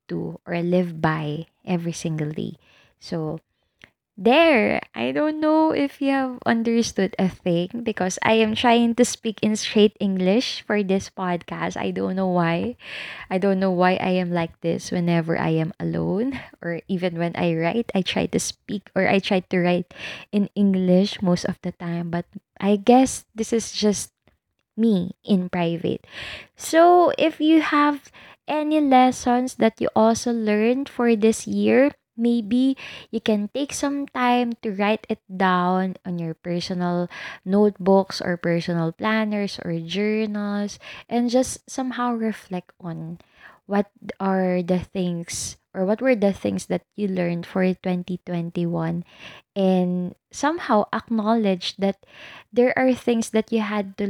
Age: 20-39